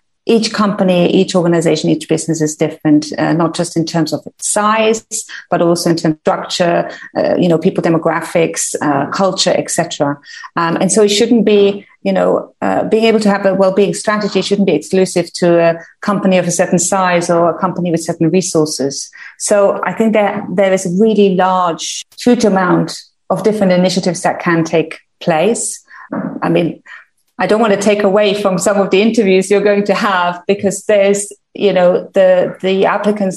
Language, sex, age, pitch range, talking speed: English, female, 30-49, 170-200 Hz, 185 wpm